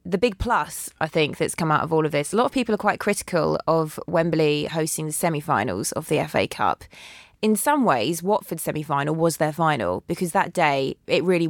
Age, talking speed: 20-39, 215 wpm